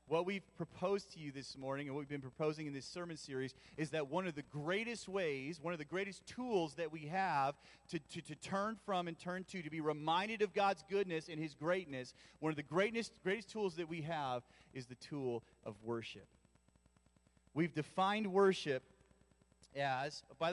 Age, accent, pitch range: 40-59, American, 140-180 Hz